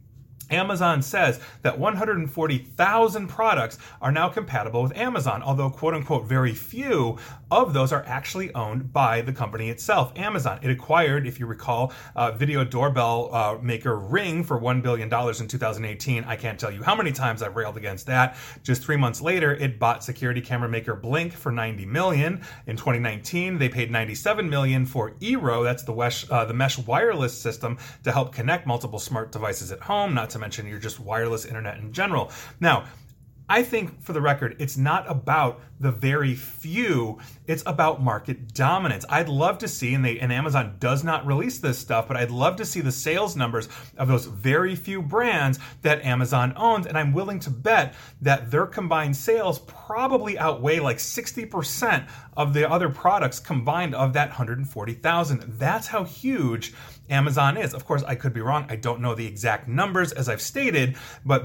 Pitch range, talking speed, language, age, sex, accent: 120-155 Hz, 175 wpm, English, 30-49, male, American